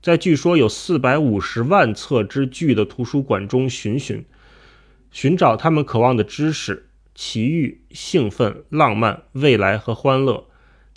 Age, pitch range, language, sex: 20-39, 115-155 Hz, Chinese, male